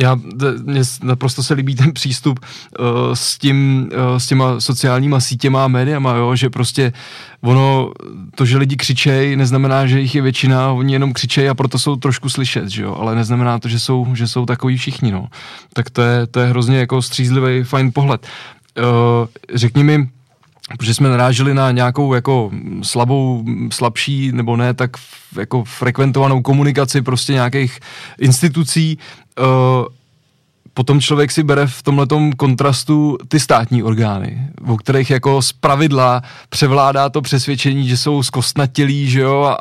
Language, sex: Czech, male